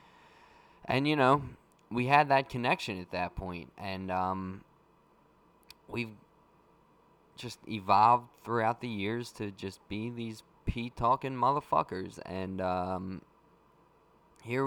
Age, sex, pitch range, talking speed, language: 20-39, male, 110-150 Hz, 110 wpm, English